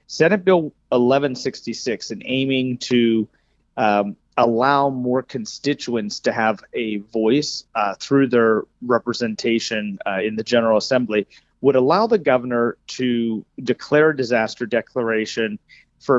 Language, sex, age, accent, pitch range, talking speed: English, male, 30-49, American, 110-130 Hz, 120 wpm